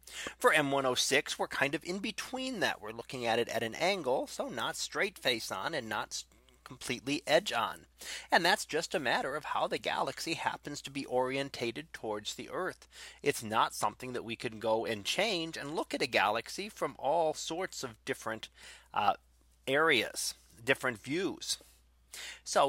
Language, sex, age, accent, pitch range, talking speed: English, male, 30-49, American, 110-145 Hz, 170 wpm